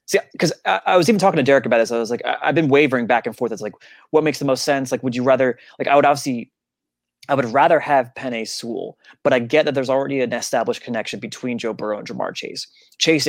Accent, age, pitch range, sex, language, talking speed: American, 20-39, 115-145 Hz, male, English, 260 wpm